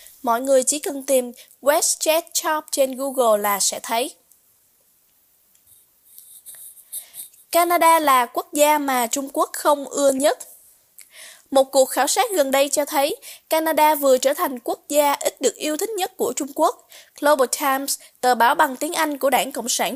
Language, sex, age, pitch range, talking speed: Vietnamese, female, 20-39, 260-320 Hz, 165 wpm